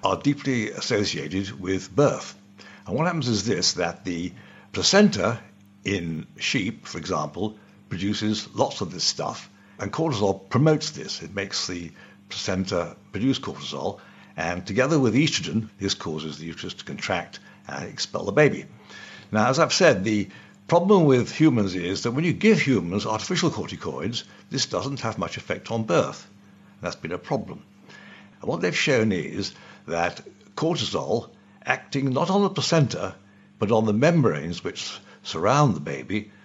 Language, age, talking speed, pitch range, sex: English, 60-79, 155 wpm, 95-120 Hz, male